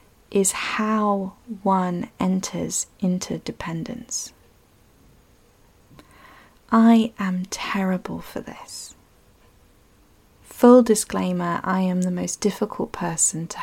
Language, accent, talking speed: English, British, 90 wpm